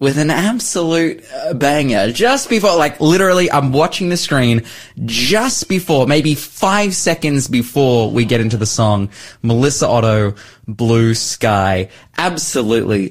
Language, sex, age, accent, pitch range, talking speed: English, male, 20-39, Australian, 115-155 Hz, 130 wpm